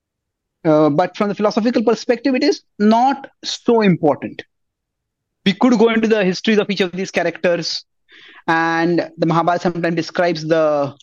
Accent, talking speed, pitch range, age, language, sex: Indian, 150 wpm, 165-225 Hz, 30-49, English, male